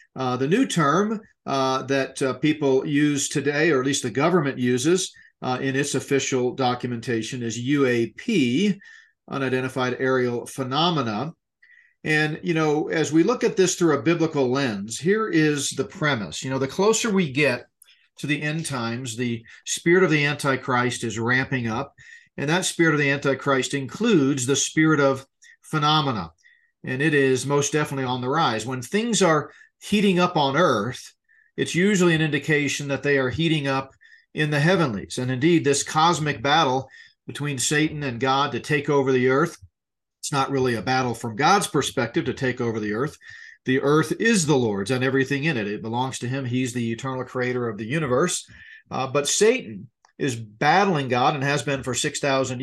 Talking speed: 175 wpm